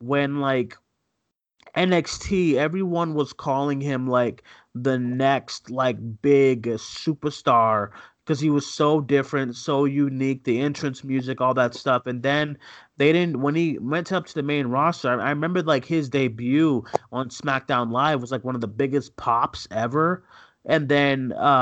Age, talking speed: 30-49, 160 wpm